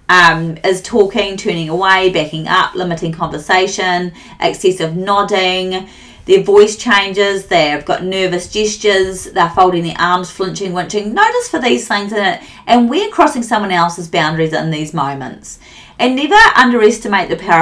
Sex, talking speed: female, 150 wpm